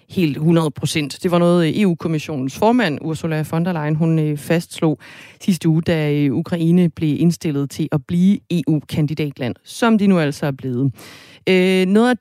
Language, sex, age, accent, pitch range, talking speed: Danish, female, 30-49, native, 150-200 Hz, 155 wpm